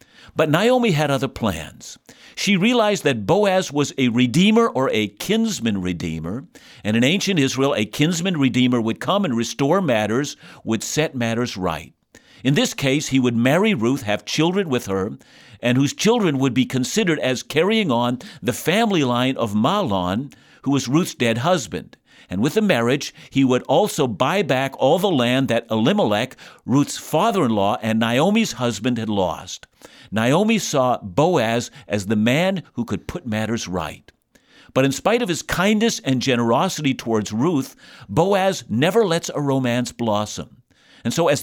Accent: American